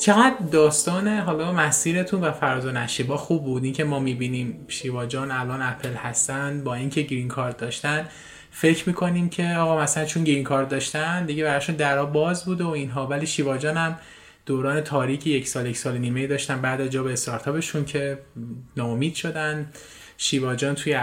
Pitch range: 130-150 Hz